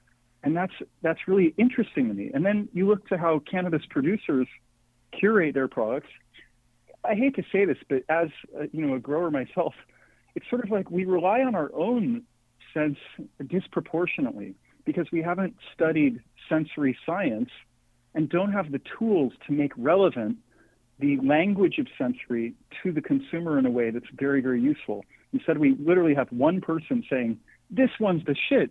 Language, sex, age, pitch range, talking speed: English, male, 40-59, 135-195 Hz, 170 wpm